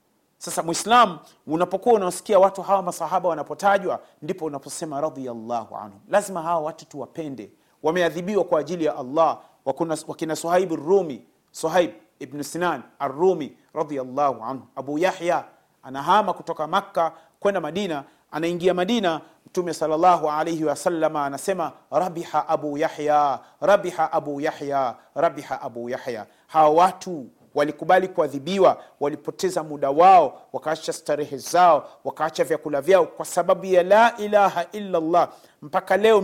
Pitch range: 160-200 Hz